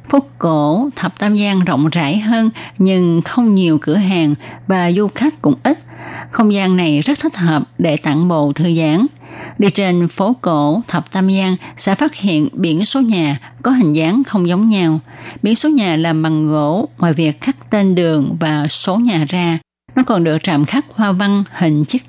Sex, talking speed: female, 195 wpm